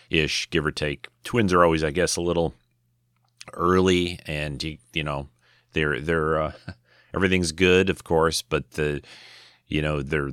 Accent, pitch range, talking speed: American, 70-85 Hz, 155 wpm